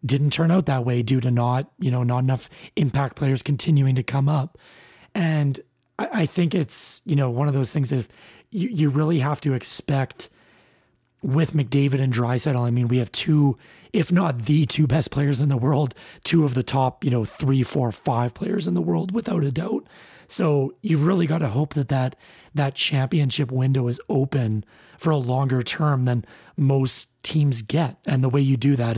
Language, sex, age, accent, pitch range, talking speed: English, male, 30-49, American, 130-155 Hz, 205 wpm